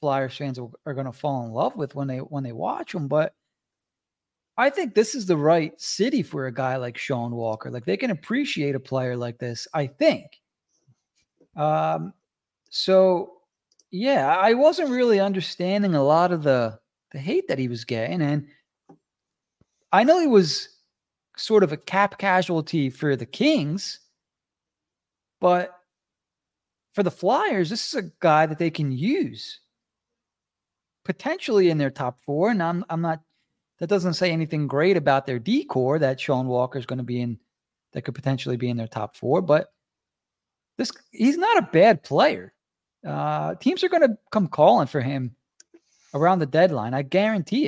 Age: 30-49